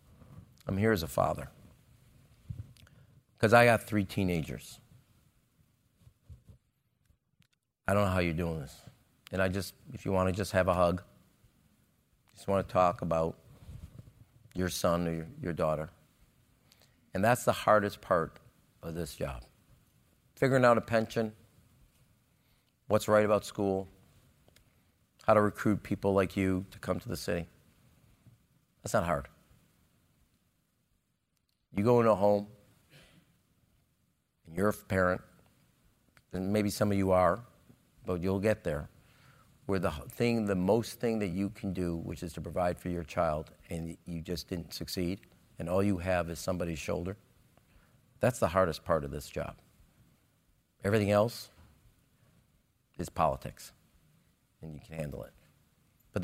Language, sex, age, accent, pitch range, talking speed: English, male, 50-69, American, 90-110 Hz, 145 wpm